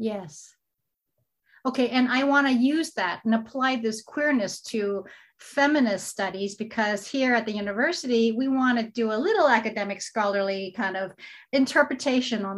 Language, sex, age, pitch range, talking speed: English, female, 30-49, 210-255 Hz, 155 wpm